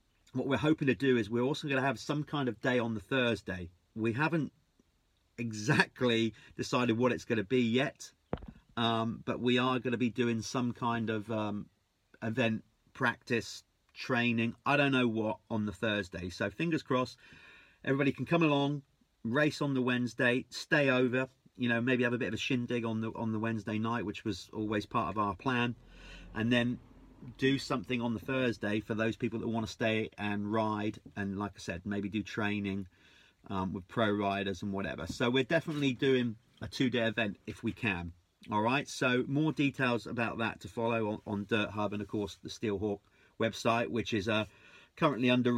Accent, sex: British, male